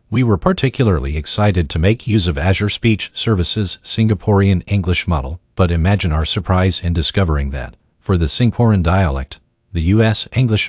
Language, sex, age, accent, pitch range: Chinese, male, 50-69, American, 85-110 Hz